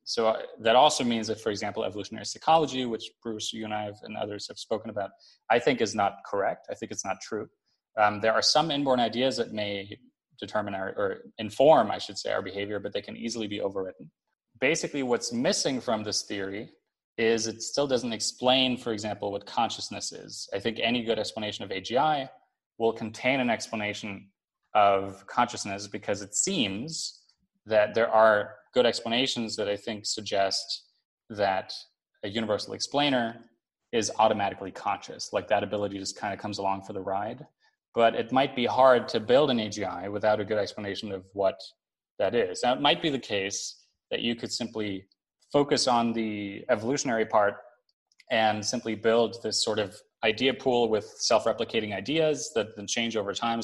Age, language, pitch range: 20-39, English, 100-120 Hz